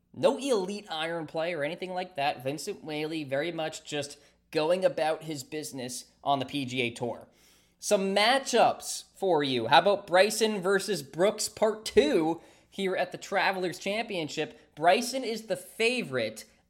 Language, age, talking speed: English, 20-39, 145 wpm